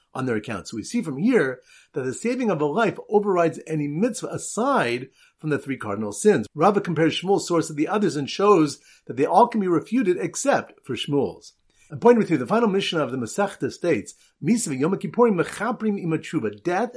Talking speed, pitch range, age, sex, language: 200 wpm, 145-205 Hz, 50-69, male, English